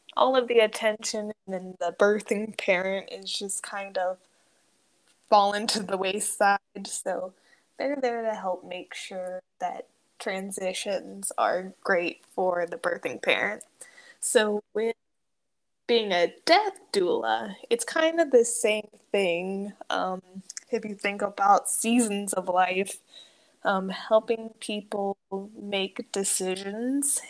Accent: American